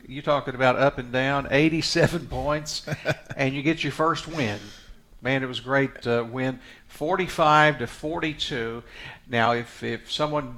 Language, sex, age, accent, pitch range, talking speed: English, male, 50-69, American, 115-140 Hz, 155 wpm